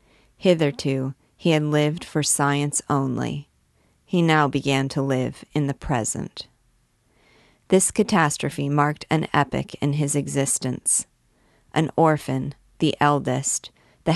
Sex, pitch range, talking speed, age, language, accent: female, 140-165 Hz, 120 wpm, 40-59, English, American